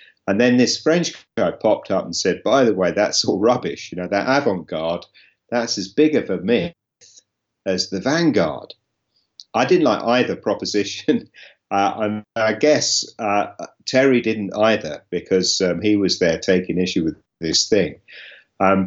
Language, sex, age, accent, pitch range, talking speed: English, male, 50-69, British, 90-110 Hz, 165 wpm